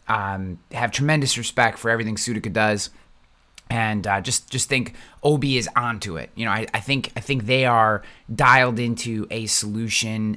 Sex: male